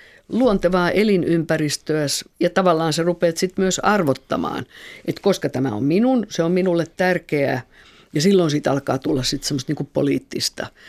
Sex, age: female, 50-69